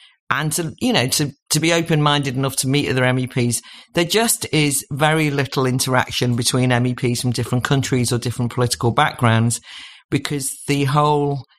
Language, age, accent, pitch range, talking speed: English, 50-69, British, 125-155 Hz, 165 wpm